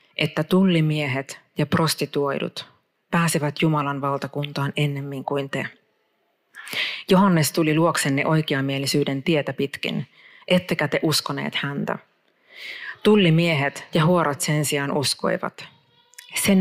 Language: Finnish